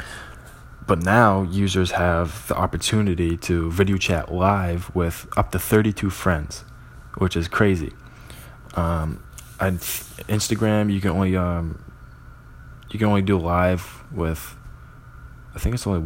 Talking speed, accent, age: 130 wpm, American, 20-39